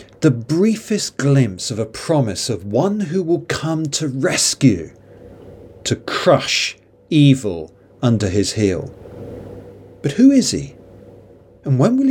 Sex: male